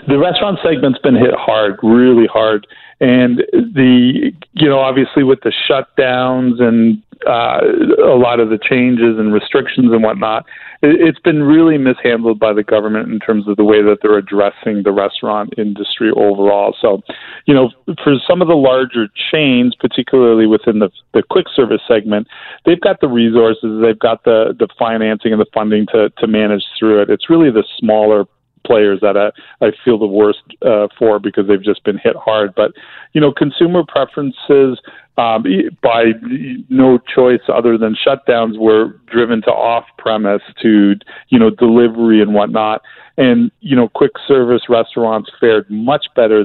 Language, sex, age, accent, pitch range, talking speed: English, male, 40-59, American, 105-125 Hz, 165 wpm